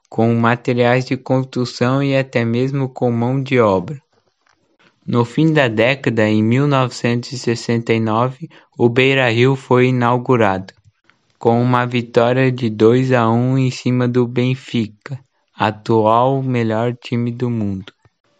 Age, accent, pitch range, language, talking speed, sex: 20-39, Brazilian, 115-135 Hz, Portuguese, 125 wpm, male